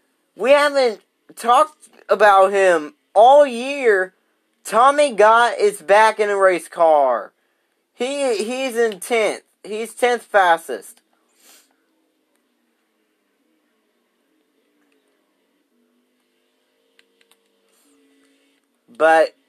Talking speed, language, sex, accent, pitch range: 70 wpm, English, male, American, 190-250 Hz